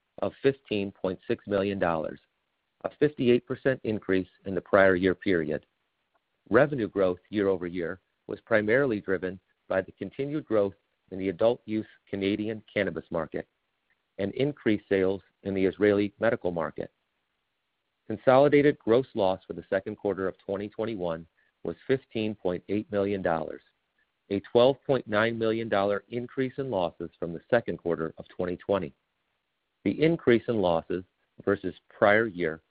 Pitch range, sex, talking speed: 90-120 Hz, male, 120 wpm